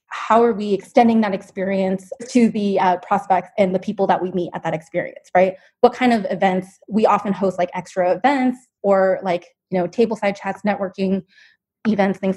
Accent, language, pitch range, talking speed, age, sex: American, English, 185-215 Hz, 195 wpm, 20-39, female